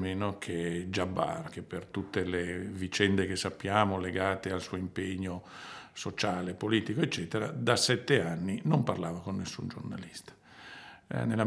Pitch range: 95-115 Hz